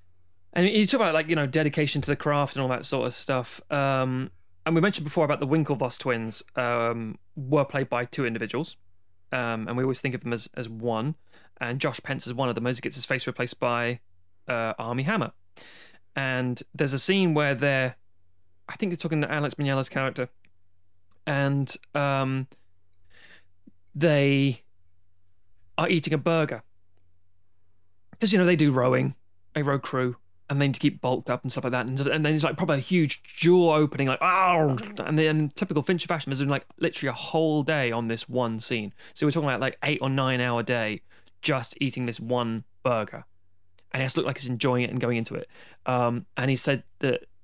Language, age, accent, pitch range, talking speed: English, 20-39, British, 115-150 Hz, 200 wpm